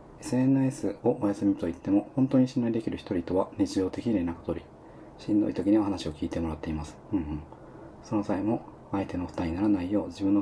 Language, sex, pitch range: Japanese, male, 95-120 Hz